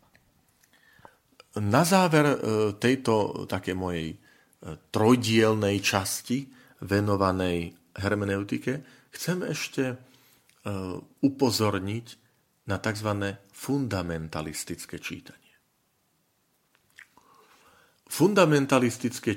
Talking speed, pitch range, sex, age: 50 wpm, 95-120 Hz, male, 40-59